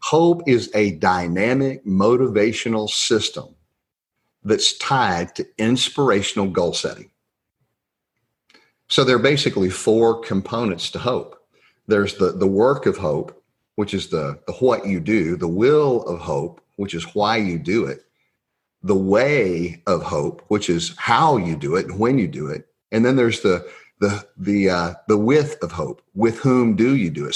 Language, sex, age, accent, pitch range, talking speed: English, male, 40-59, American, 90-115 Hz, 165 wpm